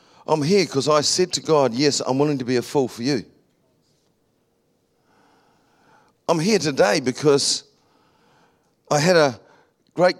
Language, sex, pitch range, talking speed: English, male, 125-150 Hz, 140 wpm